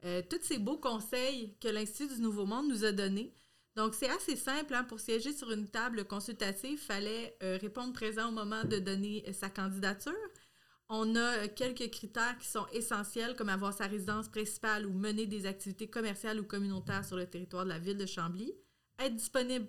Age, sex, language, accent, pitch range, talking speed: 30-49, female, French, Canadian, 200-245 Hz, 200 wpm